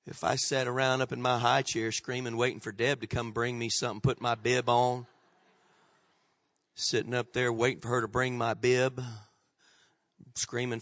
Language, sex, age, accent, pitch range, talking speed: English, male, 40-59, American, 110-130 Hz, 185 wpm